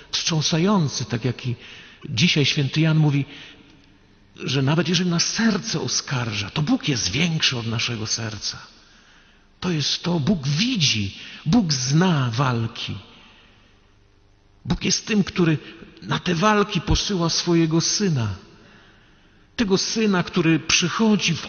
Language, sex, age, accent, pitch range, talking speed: Polish, male, 50-69, native, 130-180 Hz, 125 wpm